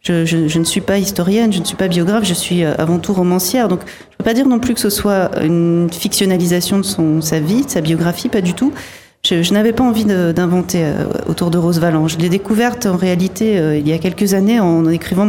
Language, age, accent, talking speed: French, 40-59, French, 245 wpm